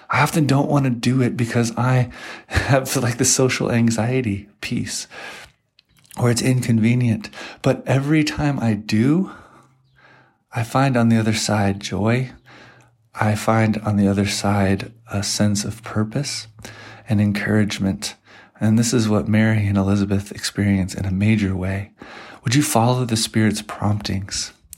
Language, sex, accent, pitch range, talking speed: English, male, American, 100-115 Hz, 145 wpm